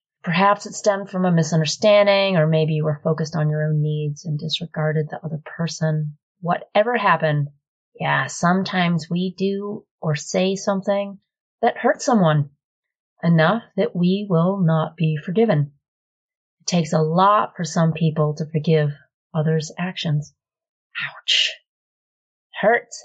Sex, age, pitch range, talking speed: female, 30-49, 155-195 Hz, 140 wpm